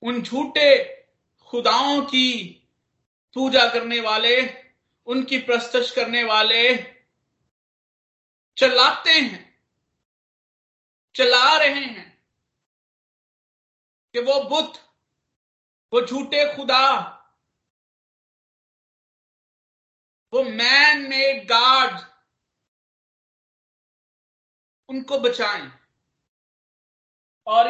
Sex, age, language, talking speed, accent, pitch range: male, 50-69, Hindi, 65 wpm, native, 180-255 Hz